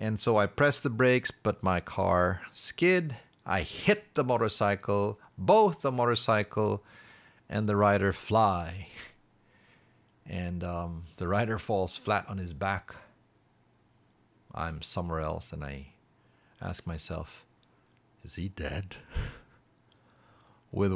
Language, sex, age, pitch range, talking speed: English, male, 40-59, 95-120 Hz, 115 wpm